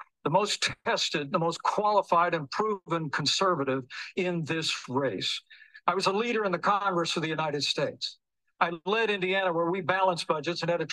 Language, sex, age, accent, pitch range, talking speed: English, male, 60-79, American, 165-195 Hz, 180 wpm